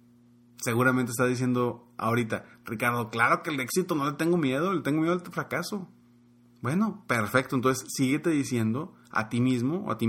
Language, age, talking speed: Spanish, 30-49, 180 wpm